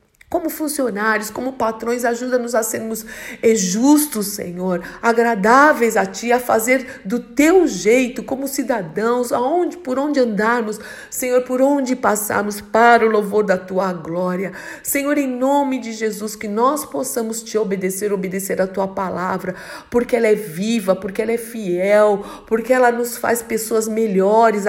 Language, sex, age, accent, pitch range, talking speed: Portuguese, female, 50-69, Brazilian, 195-255 Hz, 150 wpm